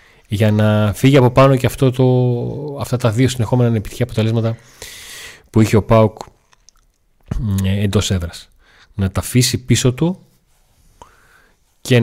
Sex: male